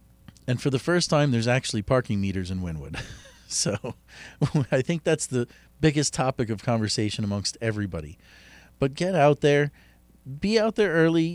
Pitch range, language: 100-135 Hz, English